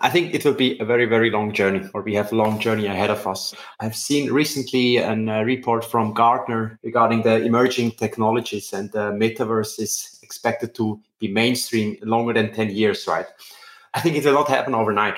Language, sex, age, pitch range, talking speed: English, male, 20-39, 110-125 Hz, 200 wpm